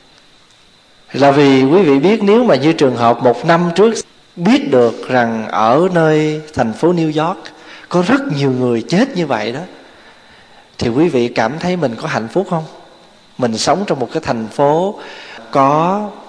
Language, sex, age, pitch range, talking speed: Vietnamese, male, 20-39, 125-175 Hz, 175 wpm